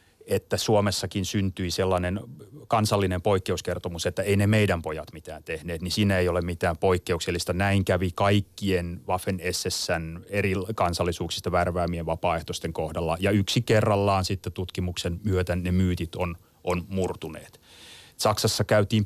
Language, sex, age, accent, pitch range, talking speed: Finnish, male, 30-49, native, 90-105 Hz, 130 wpm